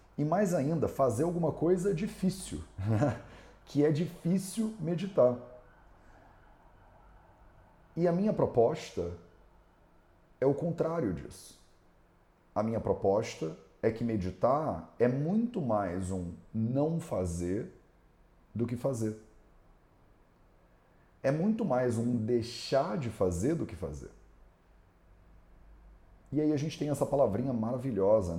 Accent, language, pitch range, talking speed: Brazilian, English, 90-145 Hz, 110 wpm